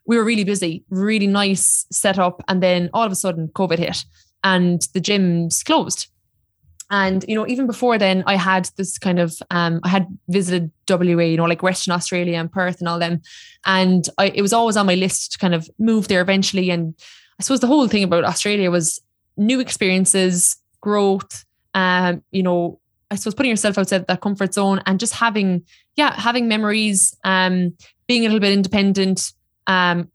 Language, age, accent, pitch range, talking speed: English, 20-39, Irish, 180-210 Hz, 195 wpm